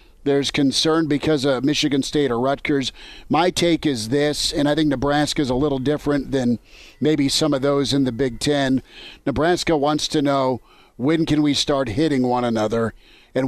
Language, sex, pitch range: English, male, 130-150 Hz